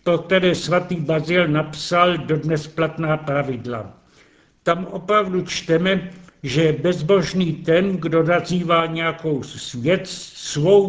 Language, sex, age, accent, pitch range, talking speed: Czech, male, 70-89, native, 150-180 Hz, 110 wpm